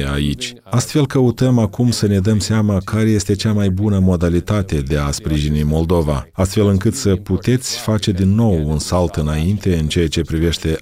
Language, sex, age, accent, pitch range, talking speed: Romanian, male, 40-59, native, 80-100 Hz, 175 wpm